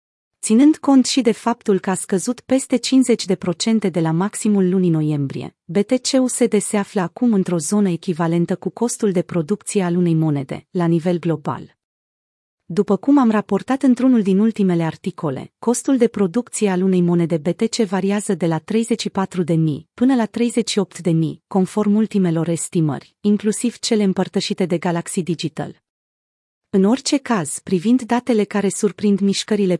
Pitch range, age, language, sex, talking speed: 175-225 Hz, 30-49, Romanian, female, 145 wpm